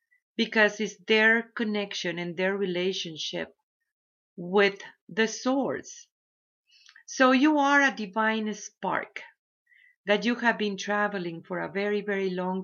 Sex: female